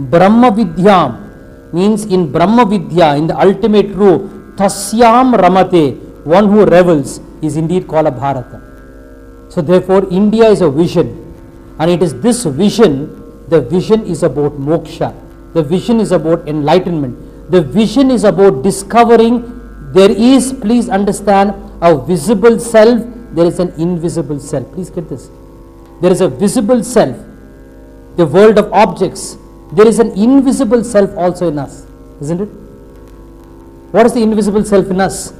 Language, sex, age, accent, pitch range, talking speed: English, male, 50-69, Indian, 150-215 Hz, 145 wpm